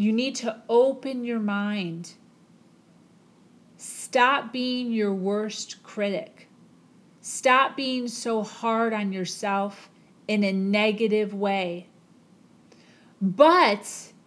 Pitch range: 200-260 Hz